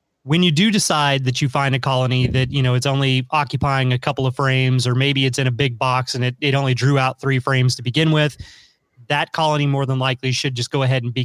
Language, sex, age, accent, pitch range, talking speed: English, male, 30-49, American, 130-145 Hz, 255 wpm